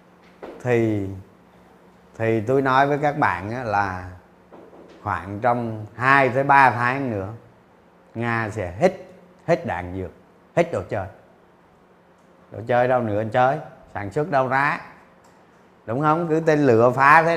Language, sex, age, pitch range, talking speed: Vietnamese, male, 30-49, 115-160 Hz, 135 wpm